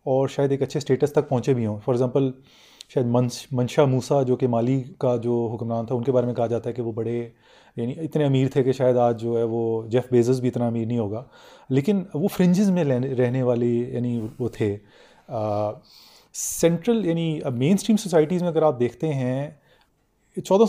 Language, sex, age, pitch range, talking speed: Urdu, male, 30-49, 120-155 Hz, 210 wpm